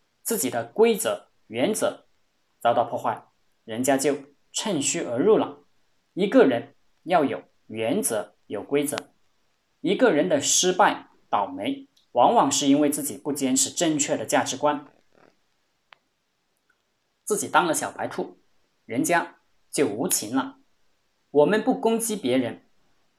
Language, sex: Chinese, male